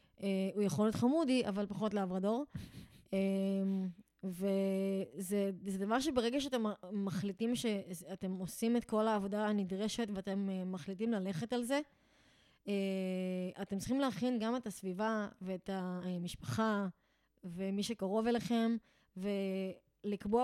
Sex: female